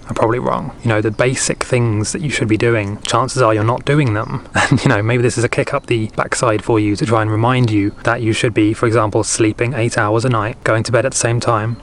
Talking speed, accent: 280 wpm, British